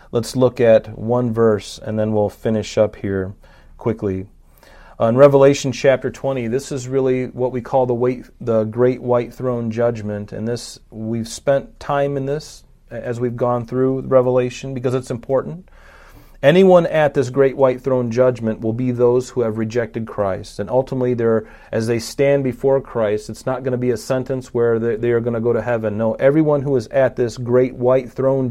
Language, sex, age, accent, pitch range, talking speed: English, male, 40-59, American, 115-135 Hz, 185 wpm